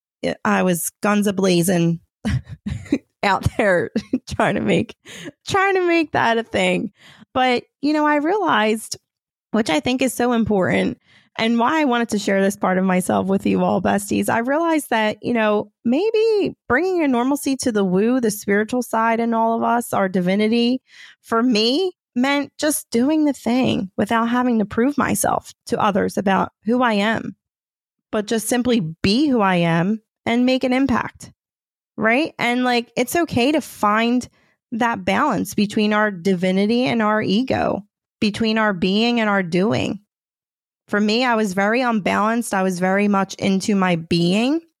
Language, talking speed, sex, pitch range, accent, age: English, 165 wpm, female, 195-245 Hz, American, 30-49